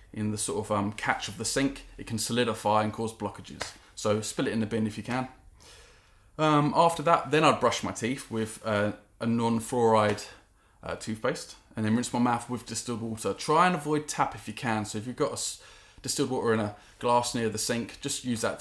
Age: 20-39